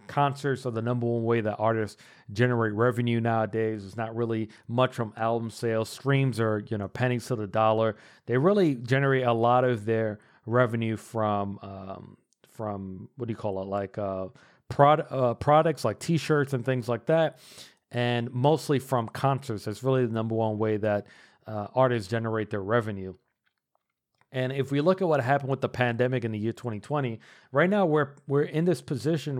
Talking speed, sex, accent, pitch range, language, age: 185 wpm, male, American, 110-135 Hz, English, 40-59